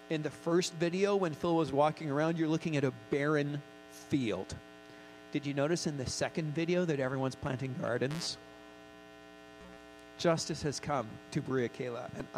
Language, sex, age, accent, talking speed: English, male, 40-59, American, 160 wpm